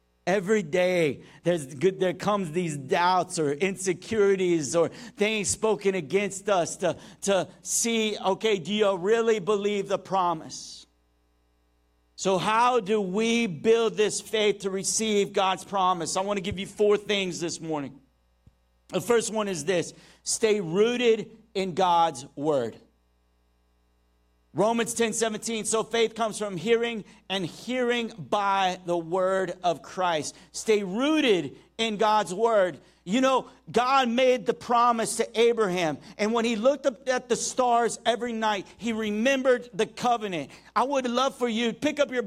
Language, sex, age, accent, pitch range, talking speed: English, male, 50-69, American, 150-225 Hz, 150 wpm